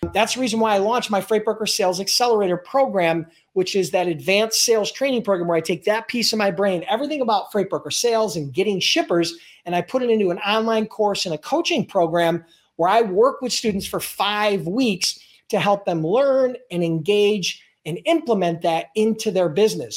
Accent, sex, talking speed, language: American, male, 195 wpm, English